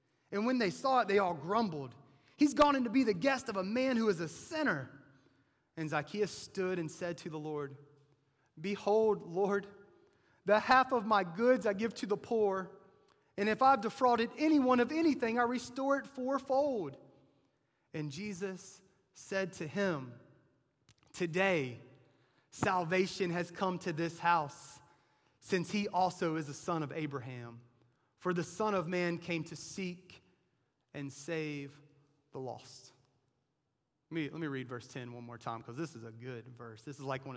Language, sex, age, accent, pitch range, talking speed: English, male, 30-49, American, 135-190 Hz, 170 wpm